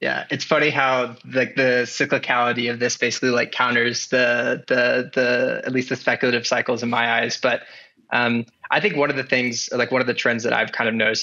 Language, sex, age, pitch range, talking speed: English, male, 20-39, 115-125 Hz, 225 wpm